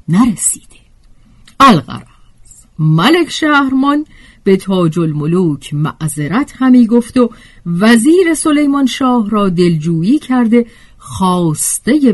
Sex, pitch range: female, 160-250 Hz